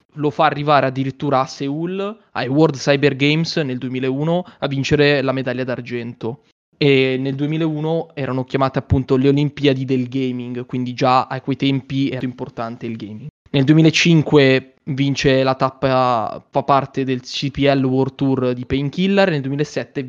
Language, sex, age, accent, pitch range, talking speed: Italian, male, 20-39, native, 130-150 Hz, 155 wpm